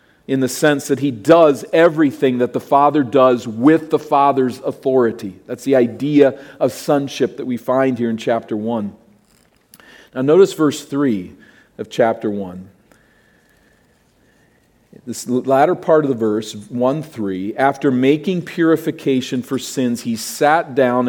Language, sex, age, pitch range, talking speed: English, male, 40-59, 125-165 Hz, 140 wpm